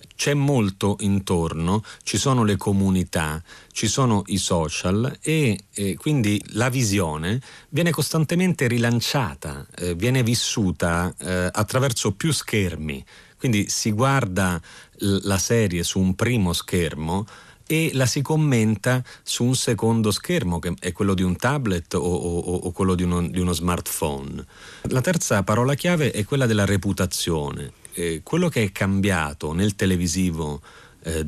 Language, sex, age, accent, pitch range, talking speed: Italian, male, 40-59, native, 90-125 Hz, 140 wpm